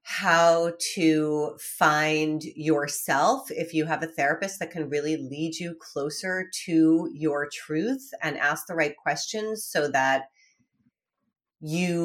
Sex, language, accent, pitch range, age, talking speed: female, English, American, 150-215 Hz, 30-49, 130 wpm